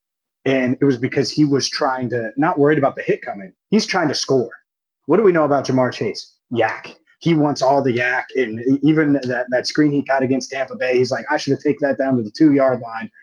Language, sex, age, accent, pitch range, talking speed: English, male, 20-39, American, 120-145 Hz, 245 wpm